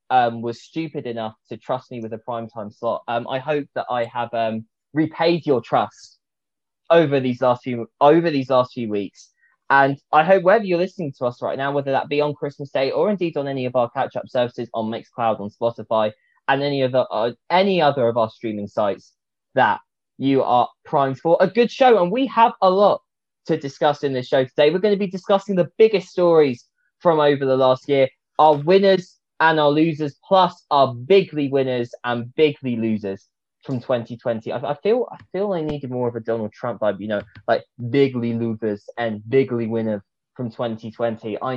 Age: 20-39